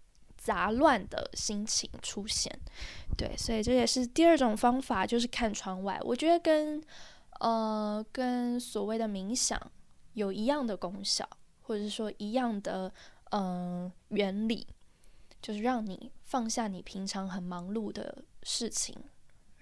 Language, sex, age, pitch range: Chinese, female, 10-29, 205-250 Hz